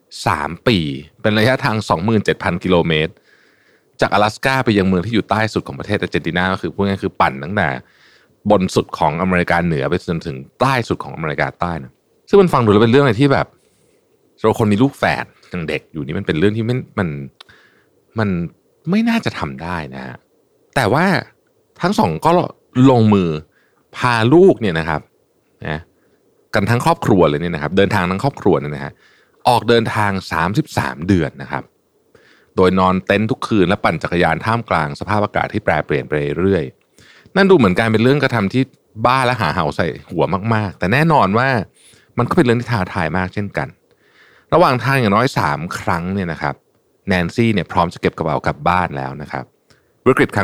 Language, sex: Thai, male